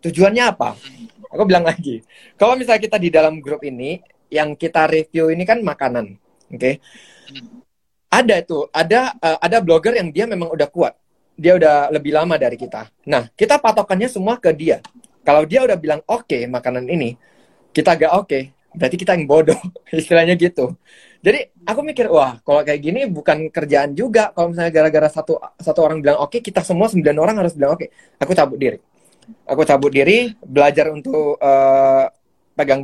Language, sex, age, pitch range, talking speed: Indonesian, male, 20-39, 145-210 Hz, 180 wpm